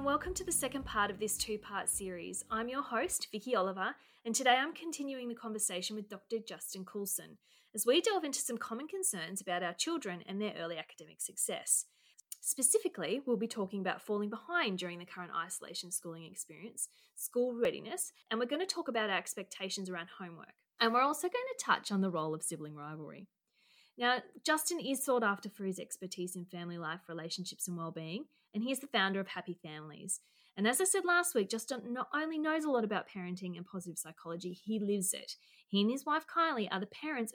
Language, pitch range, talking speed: English, 180-255 Hz, 205 wpm